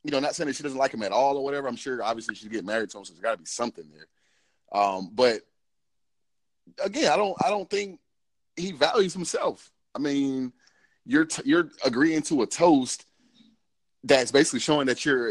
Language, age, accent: English, 30-49, American